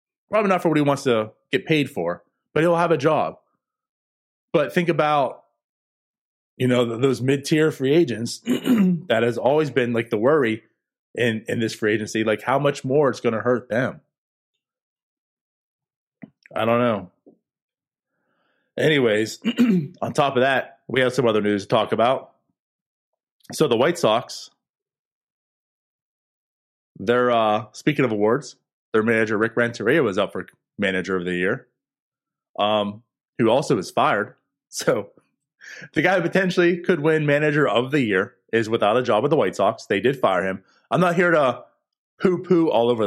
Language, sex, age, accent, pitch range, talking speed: English, male, 20-39, American, 110-155 Hz, 160 wpm